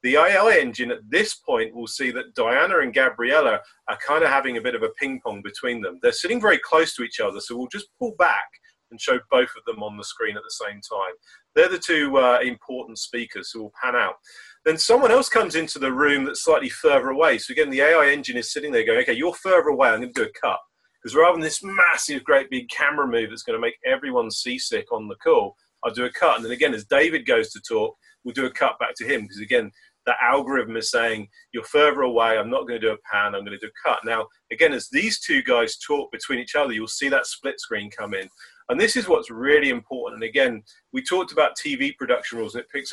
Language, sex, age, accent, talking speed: English, male, 30-49, British, 255 wpm